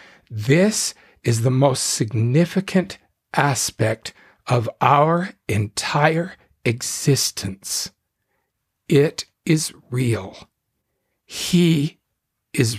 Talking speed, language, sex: 70 wpm, English, male